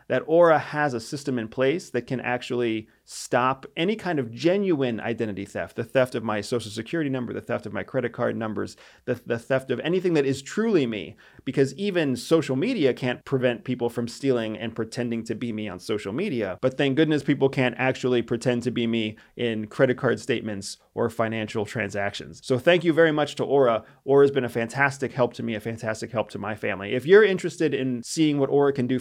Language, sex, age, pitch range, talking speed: English, male, 30-49, 115-145 Hz, 215 wpm